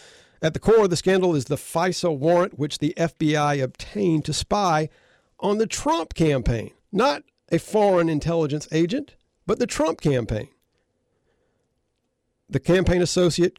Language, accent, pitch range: English, American, 145-185 Hz